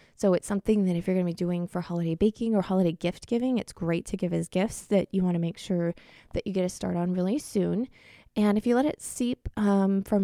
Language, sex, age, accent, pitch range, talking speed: English, female, 20-39, American, 170-200 Hz, 265 wpm